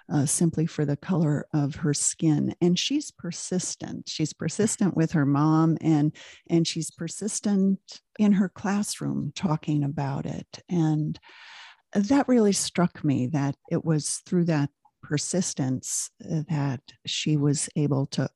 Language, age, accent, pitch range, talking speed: English, 50-69, American, 140-180 Hz, 135 wpm